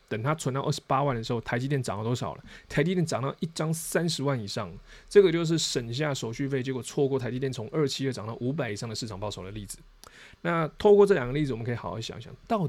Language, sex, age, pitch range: Chinese, male, 20-39, 110-150 Hz